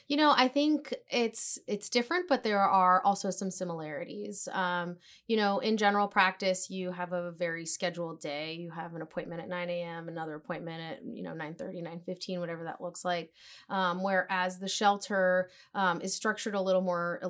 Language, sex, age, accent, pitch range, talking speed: English, female, 20-39, American, 175-200 Hz, 185 wpm